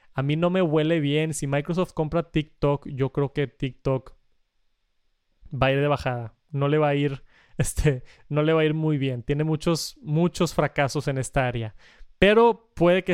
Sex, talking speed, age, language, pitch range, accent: male, 170 wpm, 20-39, Spanish, 140-170 Hz, Mexican